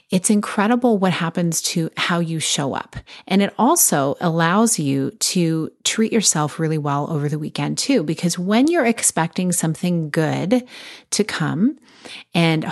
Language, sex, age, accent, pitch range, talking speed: English, female, 30-49, American, 155-200 Hz, 150 wpm